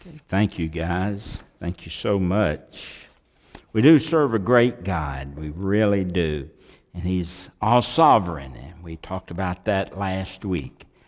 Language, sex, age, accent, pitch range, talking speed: English, male, 60-79, American, 95-125 Hz, 140 wpm